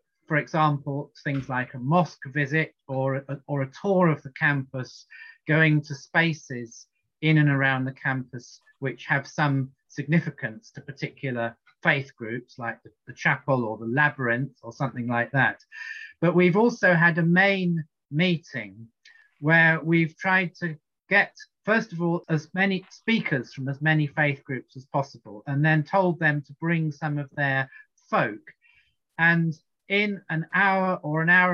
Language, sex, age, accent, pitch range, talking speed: English, male, 40-59, British, 140-175 Hz, 160 wpm